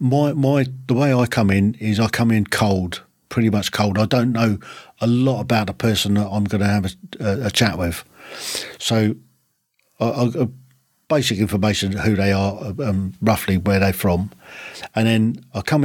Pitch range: 100-115 Hz